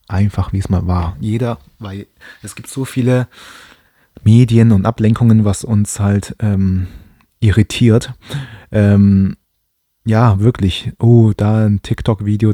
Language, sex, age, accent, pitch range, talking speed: German, male, 20-39, German, 95-115 Hz, 125 wpm